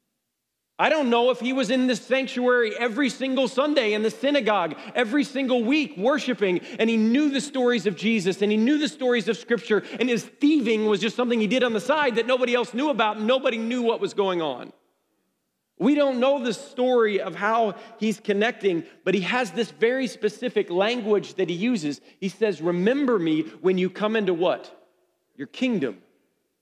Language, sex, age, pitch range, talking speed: English, male, 40-59, 200-255 Hz, 195 wpm